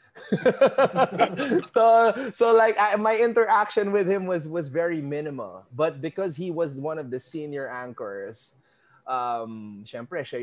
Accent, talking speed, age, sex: Filipino, 125 wpm, 20-39, male